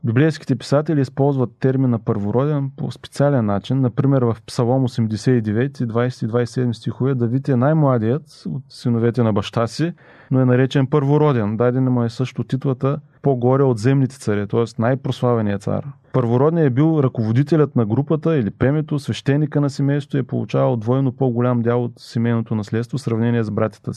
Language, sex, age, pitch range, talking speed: Bulgarian, male, 30-49, 120-140 Hz, 165 wpm